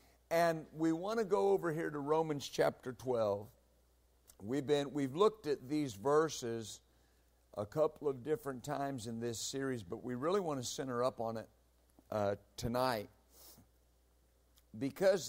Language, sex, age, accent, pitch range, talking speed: English, male, 50-69, American, 100-150 Hz, 145 wpm